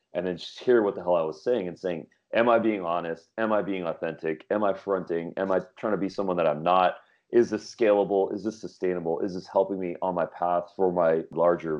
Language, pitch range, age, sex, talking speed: English, 85-105 Hz, 30-49, male, 245 wpm